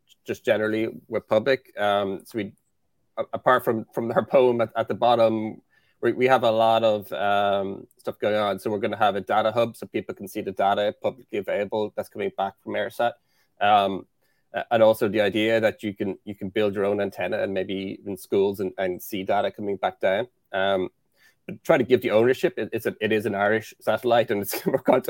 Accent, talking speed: Irish, 210 wpm